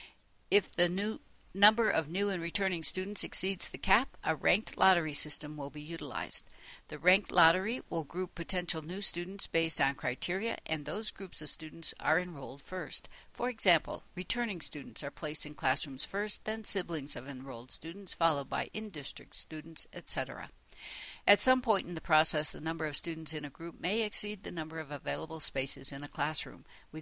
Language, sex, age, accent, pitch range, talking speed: English, female, 60-79, American, 150-195 Hz, 180 wpm